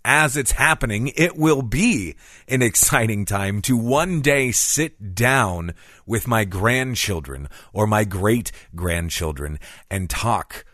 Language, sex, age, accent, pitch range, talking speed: English, male, 30-49, American, 85-135 Hz, 125 wpm